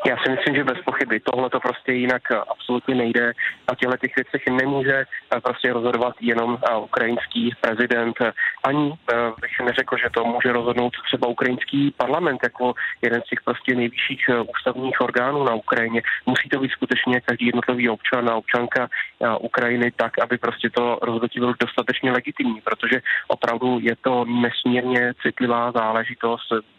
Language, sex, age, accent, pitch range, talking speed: Czech, male, 20-39, native, 120-130 Hz, 150 wpm